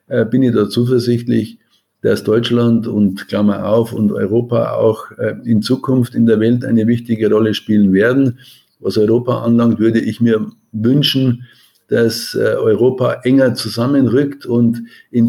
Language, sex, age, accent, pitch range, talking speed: German, male, 50-69, German, 110-125 Hz, 135 wpm